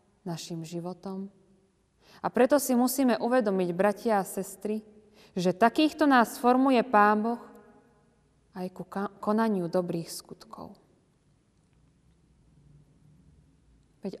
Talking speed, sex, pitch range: 95 wpm, female, 185-240 Hz